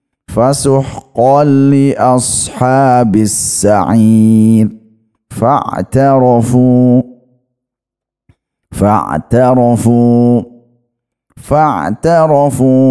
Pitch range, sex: 110-135 Hz, male